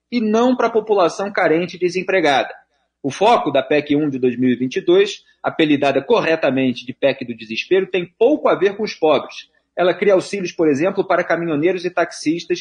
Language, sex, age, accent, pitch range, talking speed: Portuguese, male, 40-59, Brazilian, 145-205 Hz, 175 wpm